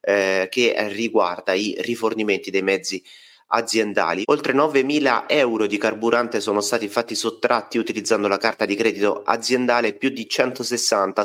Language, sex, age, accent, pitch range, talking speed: Italian, male, 30-49, native, 105-130 Hz, 135 wpm